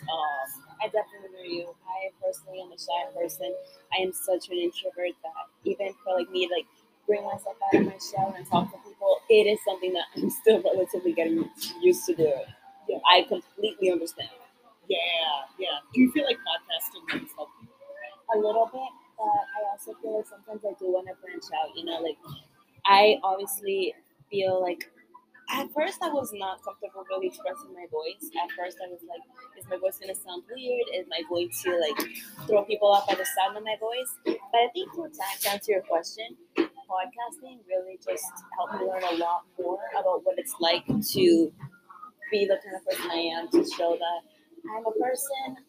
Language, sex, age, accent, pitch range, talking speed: English, female, 20-39, American, 185-255 Hz, 190 wpm